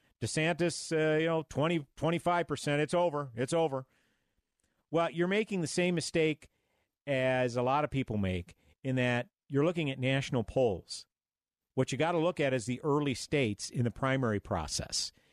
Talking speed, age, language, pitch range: 160 wpm, 50-69, English, 120-155 Hz